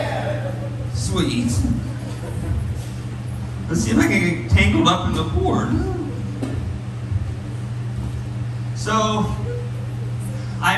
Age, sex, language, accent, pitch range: 40-59, male, English, American, 110-120 Hz